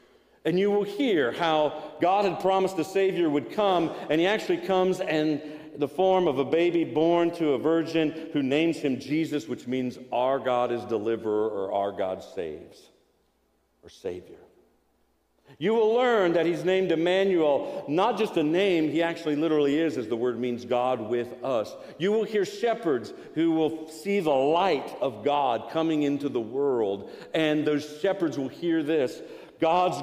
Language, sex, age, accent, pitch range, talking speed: English, male, 50-69, American, 120-165 Hz, 170 wpm